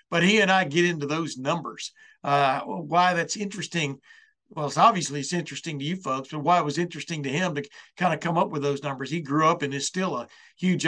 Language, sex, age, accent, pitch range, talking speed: English, male, 60-79, American, 145-175 Hz, 235 wpm